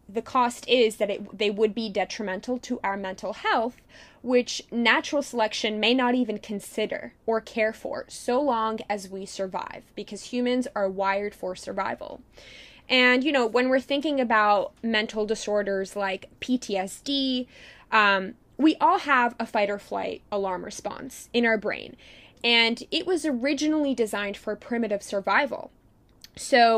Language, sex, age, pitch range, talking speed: English, female, 20-39, 205-260 Hz, 150 wpm